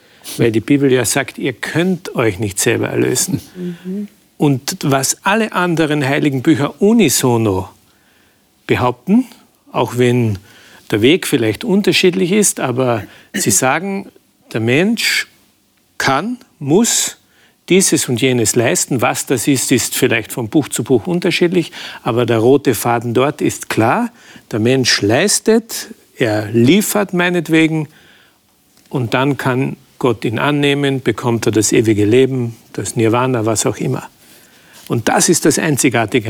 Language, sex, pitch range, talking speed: German, male, 115-160 Hz, 135 wpm